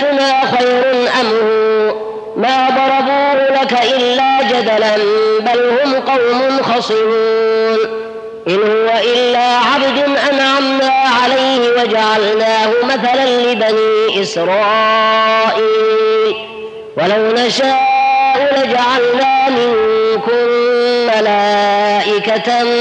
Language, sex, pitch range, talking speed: Arabic, female, 220-270 Hz, 70 wpm